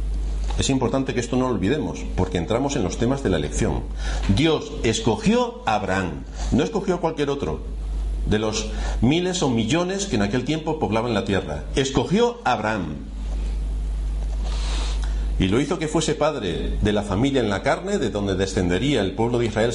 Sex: male